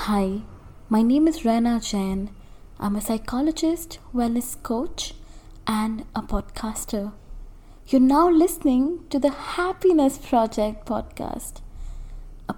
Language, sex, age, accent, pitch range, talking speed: English, female, 20-39, Indian, 235-300 Hz, 110 wpm